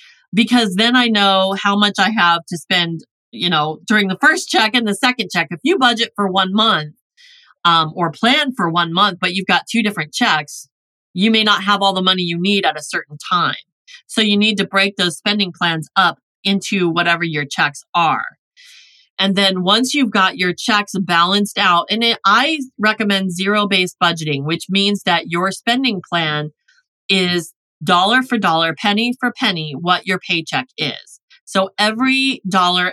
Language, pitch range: English, 175-220 Hz